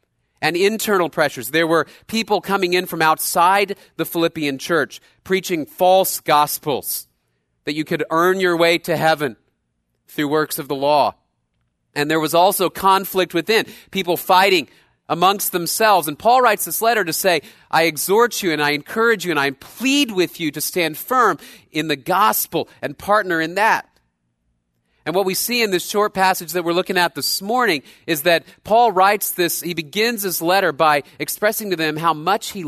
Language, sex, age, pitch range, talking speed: English, male, 40-59, 120-190 Hz, 180 wpm